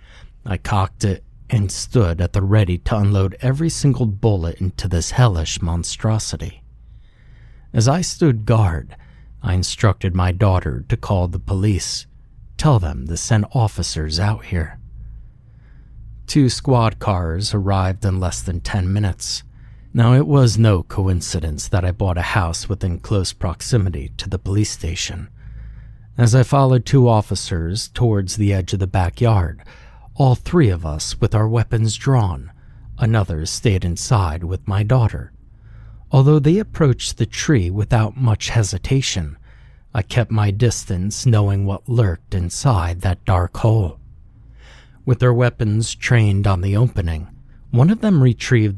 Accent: American